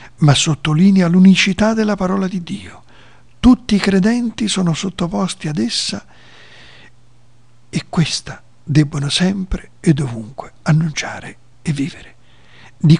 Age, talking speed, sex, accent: 50-69, 110 wpm, male, native